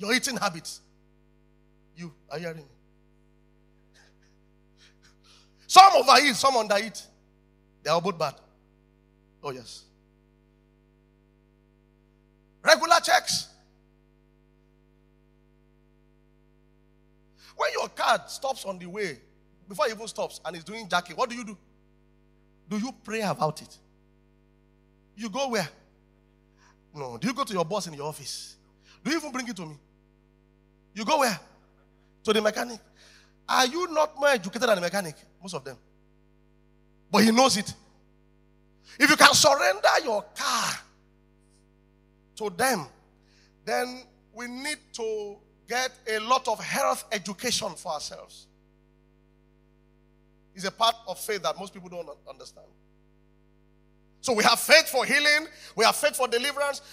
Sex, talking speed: male, 130 wpm